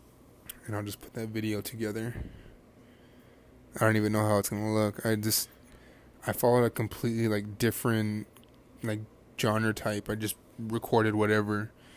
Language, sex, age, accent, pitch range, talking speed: English, male, 20-39, American, 105-125 Hz, 155 wpm